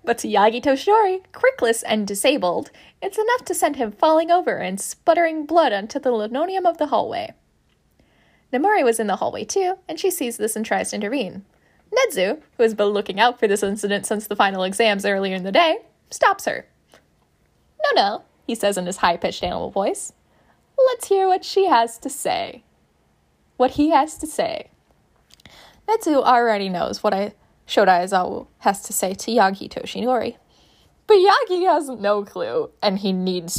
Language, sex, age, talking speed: English, female, 10-29, 175 wpm